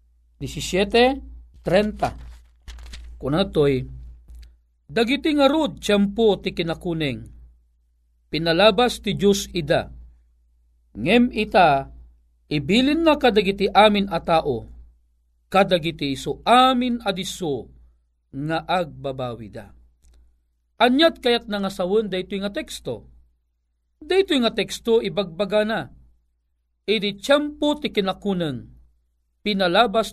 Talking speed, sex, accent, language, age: 90 wpm, male, native, Filipino, 50-69